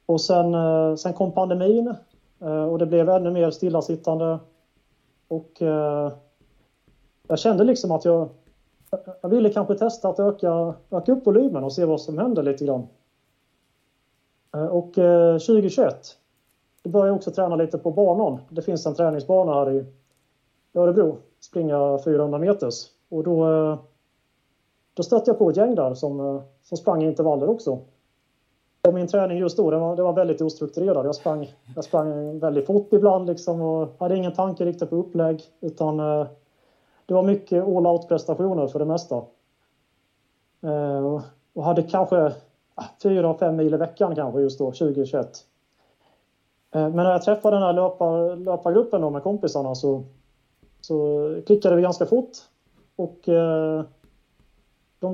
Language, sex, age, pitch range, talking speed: Swedish, male, 30-49, 145-185 Hz, 140 wpm